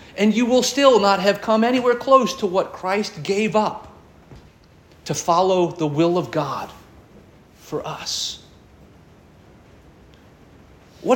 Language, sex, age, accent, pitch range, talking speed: English, male, 40-59, American, 115-185 Hz, 125 wpm